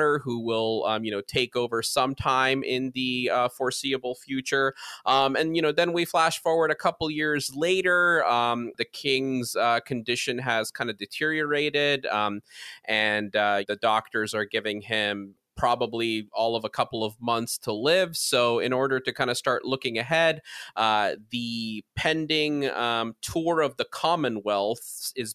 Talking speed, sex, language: 165 wpm, male, English